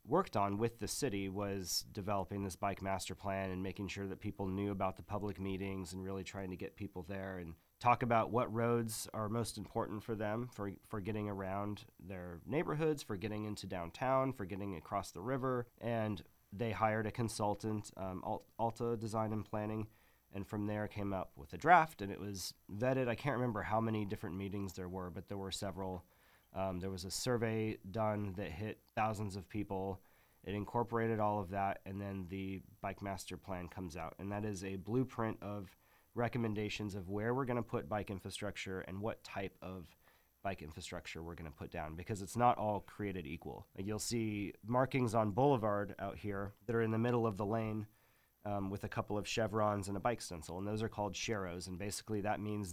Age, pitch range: 30-49, 95-110 Hz